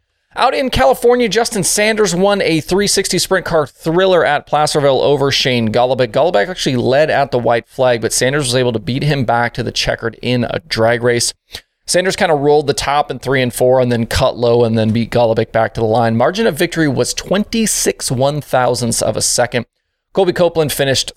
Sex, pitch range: male, 120-165 Hz